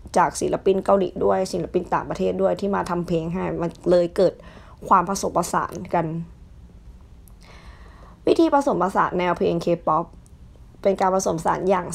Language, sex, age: Thai, female, 20-39